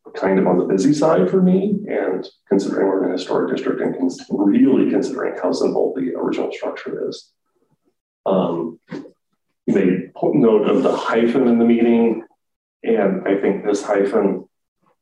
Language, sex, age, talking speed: English, male, 30-49, 160 wpm